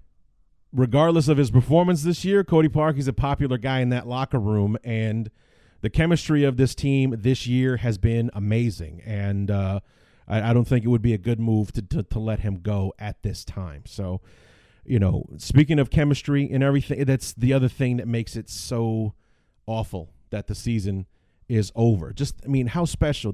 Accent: American